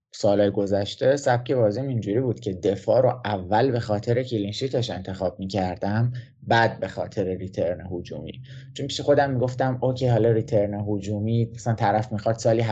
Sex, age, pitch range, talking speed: male, 20-39, 100-125 Hz, 150 wpm